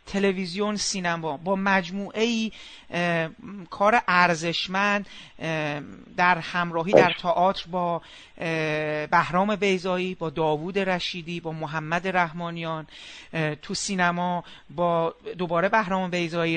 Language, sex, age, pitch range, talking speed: Persian, male, 40-59, 175-235 Hz, 95 wpm